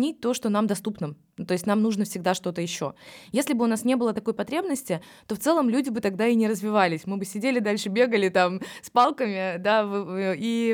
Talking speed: 205 wpm